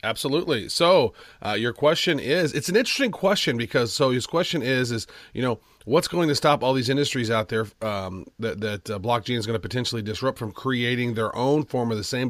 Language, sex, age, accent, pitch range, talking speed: English, male, 30-49, American, 115-145 Hz, 220 wpm